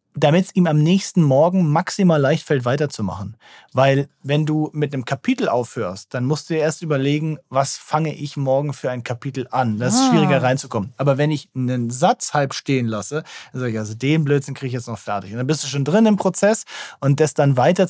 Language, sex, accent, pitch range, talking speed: German, male, German, 130-160 Hz, 220 wpm